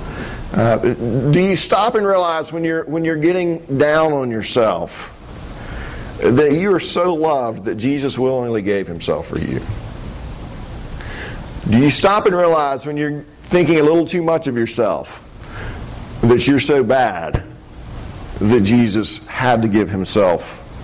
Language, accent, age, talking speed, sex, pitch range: English, American, 50-69, 145 wpm, male, 120-160 Hz